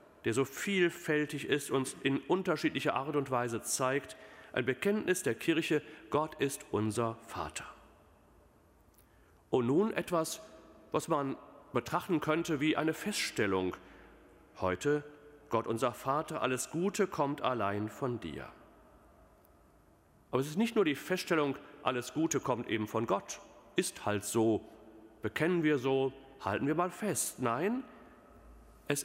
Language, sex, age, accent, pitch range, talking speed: German, male, 40-59, German, 125-195 Hz, 130 wpm